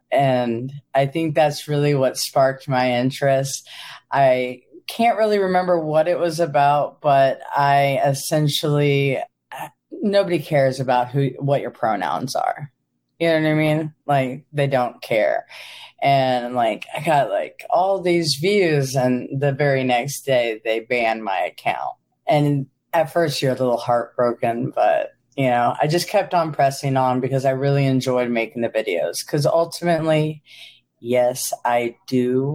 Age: 40-59